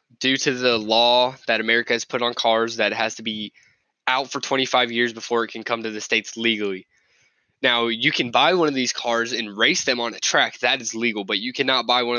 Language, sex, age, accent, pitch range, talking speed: English, male, 10-29, American, 115-140 Hz, 235 wpm